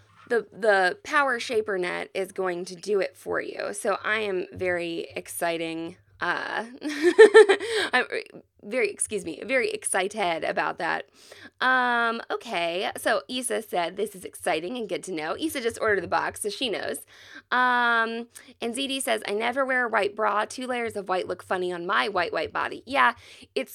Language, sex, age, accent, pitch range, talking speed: English, female, 20-39, American, 170-250 Hz, 175 wpm